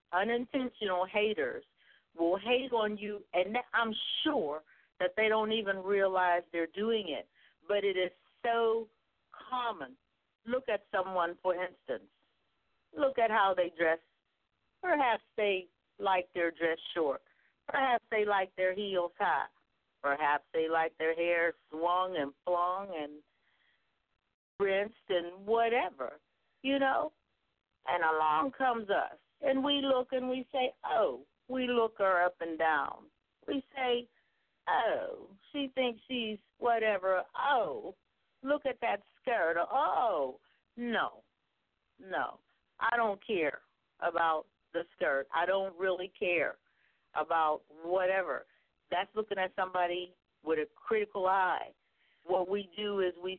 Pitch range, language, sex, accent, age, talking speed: 175-235 Hz, English, female, American, 50-69, 130 wpm